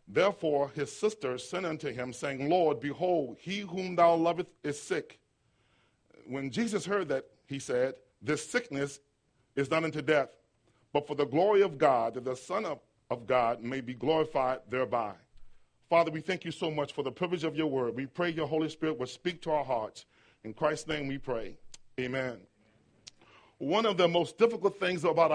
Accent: American